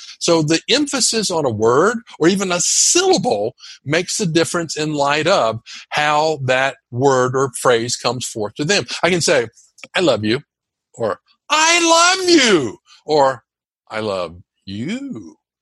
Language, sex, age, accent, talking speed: English, male, 60-79, American, 150 wpm